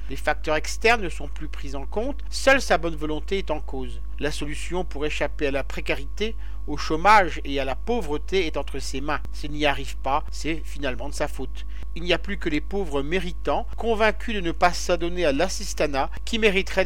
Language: French